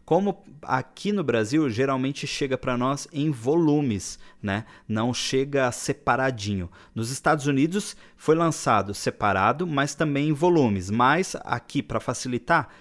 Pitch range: 115-155 Hz